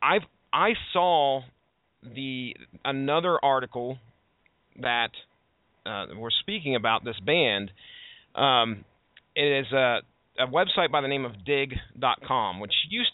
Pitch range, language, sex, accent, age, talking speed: 115-145 Hz, English, male, American, 40-59, 120 wpm